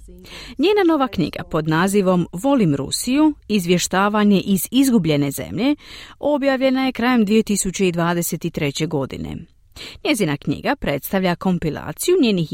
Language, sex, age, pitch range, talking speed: Croatian, female, 40-59, 165-255 Hz, 100 wpm